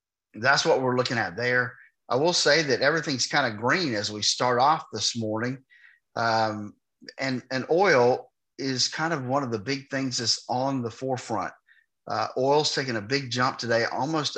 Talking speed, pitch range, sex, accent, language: 185 wpm, 110-130 Hz, male, American, English